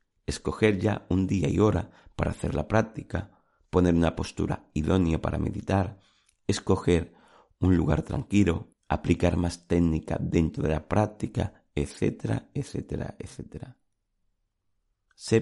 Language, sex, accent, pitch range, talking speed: Spanish, male, Spanish, 85-110 Hz, 120 wpm